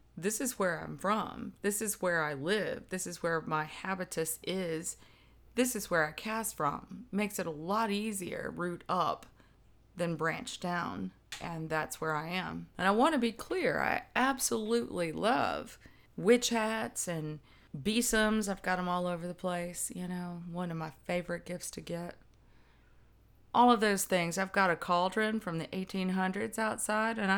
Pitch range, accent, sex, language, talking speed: 155-210 Hz, American, female, English, 175 wpm